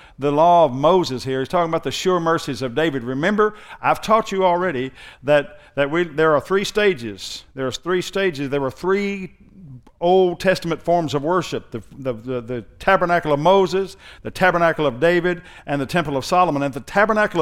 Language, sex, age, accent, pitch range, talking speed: English, male, 50-69, American, 150-195 Hz, 190 wpm